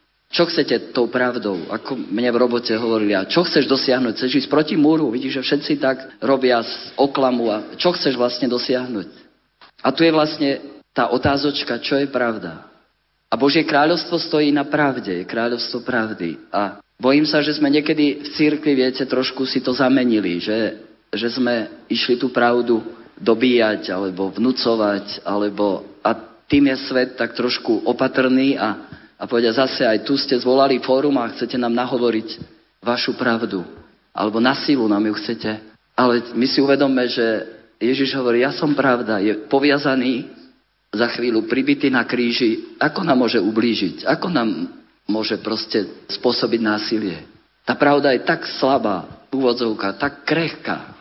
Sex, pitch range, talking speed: male, 115-140 Hz, 155 wpm